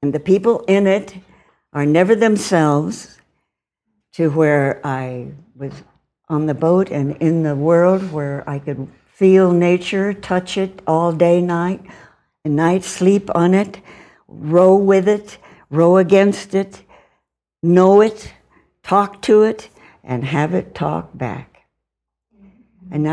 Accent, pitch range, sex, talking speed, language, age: American, 150-195 Hz, female, 130 wpm, English, 60-79